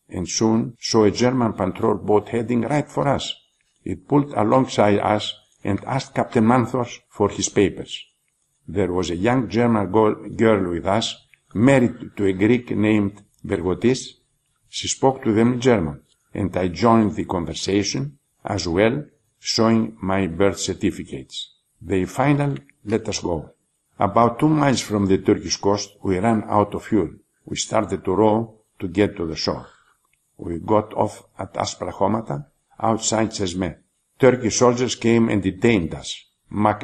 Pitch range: 95-120 Hz